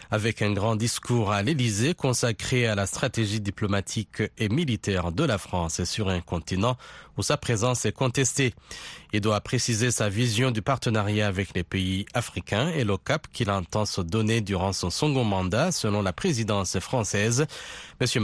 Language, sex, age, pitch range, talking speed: French, male, 40-59, 95-120 Hz, 170 wpm